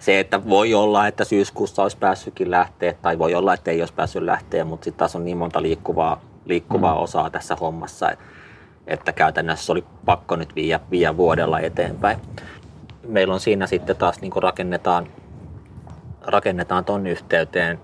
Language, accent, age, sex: Finnish, native, 30-49, male